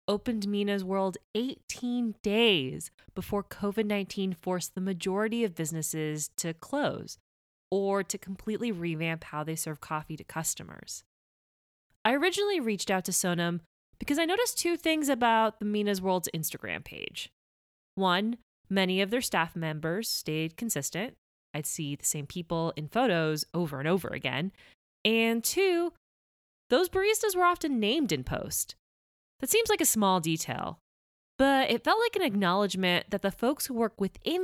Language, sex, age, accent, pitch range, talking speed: English, female, 20-39, American, 160-230 Hz, 150 wpm